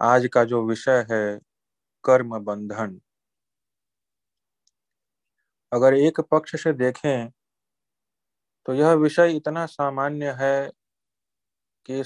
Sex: male